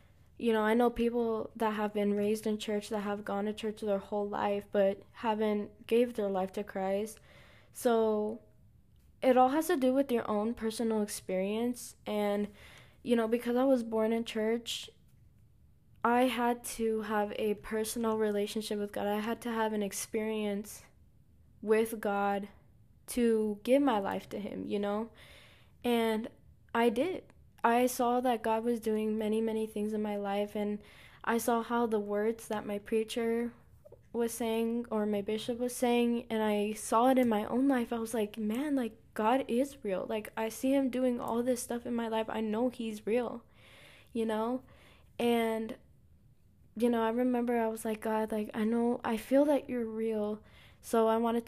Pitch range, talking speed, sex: 215-240 Hz, 180 wpm, female